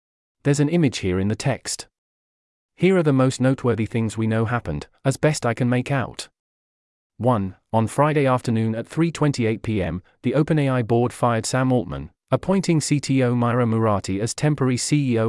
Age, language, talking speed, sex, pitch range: 40-59, English, 160 wpm, male, 110-140 Hz